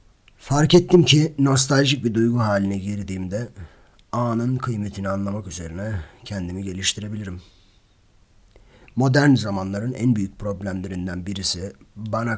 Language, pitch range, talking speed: Turkish, 95-120 Hz, 100 wpm